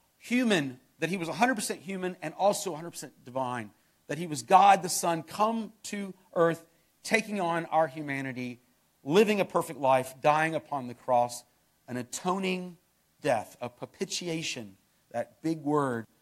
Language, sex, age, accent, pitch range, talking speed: English, male, 40-59, American, 130-185 Hz, 145 wpm